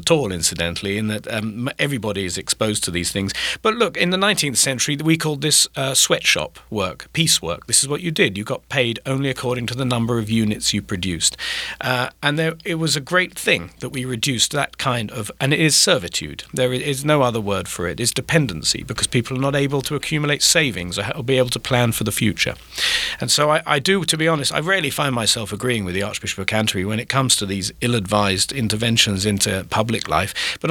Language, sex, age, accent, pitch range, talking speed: English, male, 50-69, British, 110-155 Hz, 230 wpm